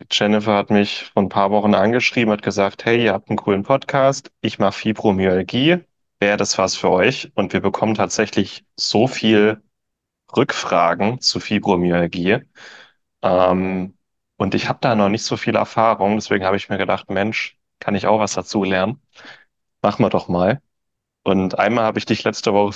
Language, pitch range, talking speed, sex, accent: German, 95-110 Hz, 175 wpm, male, German